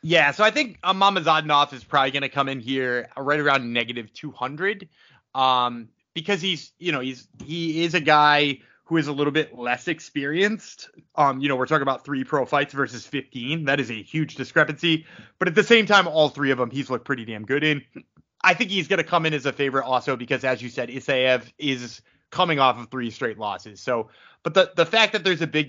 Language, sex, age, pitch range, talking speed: English, male, 30-49, 125-170 Hz, 225 wpm